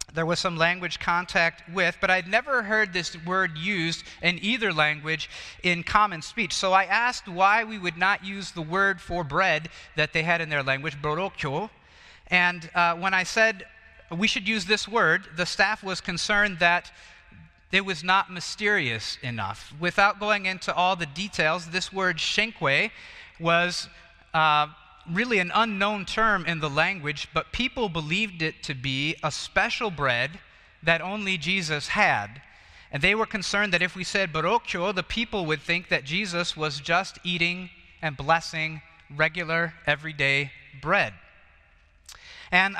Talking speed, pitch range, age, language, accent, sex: 160 wpm, 160-200 Hz, 30-49, English, American, male